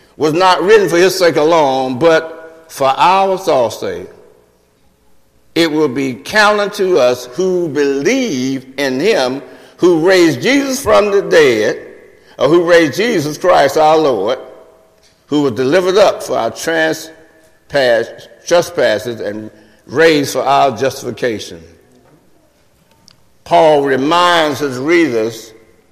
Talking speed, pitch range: 120 wpm, 135-210 Hz